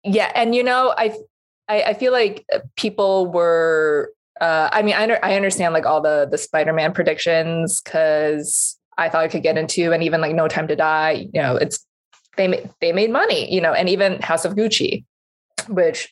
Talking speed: 190 wpm